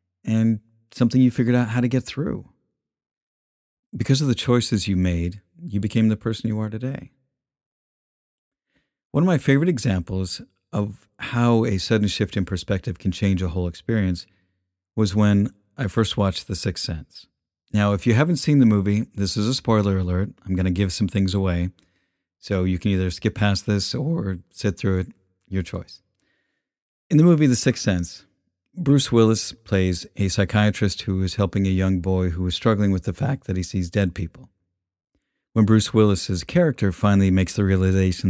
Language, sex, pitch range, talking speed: English, male, 90-115 Hz, 180 wpm